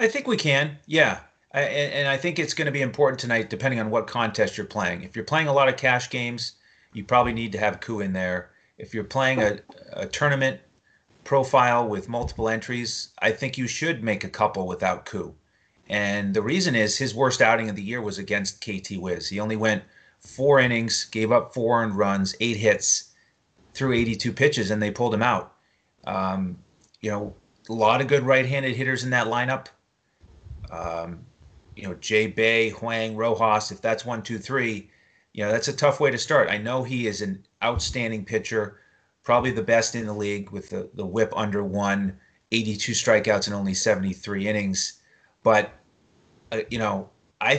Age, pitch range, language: 30-49, 105-130 Hz, English